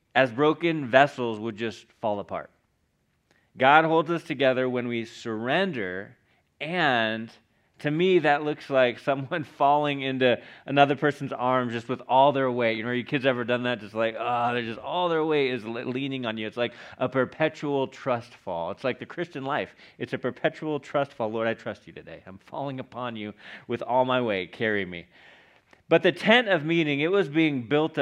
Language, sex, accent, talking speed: English, male, American, 195 wpm